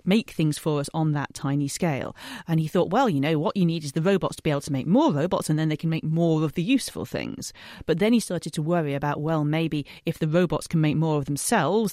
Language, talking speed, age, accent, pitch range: English, 270 wpm, 40-59, British, 150-195 Hz